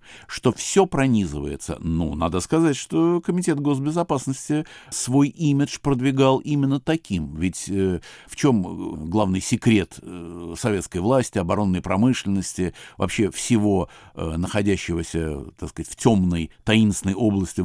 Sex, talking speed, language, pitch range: male, 125 wpm, Russian, 90-135 Hz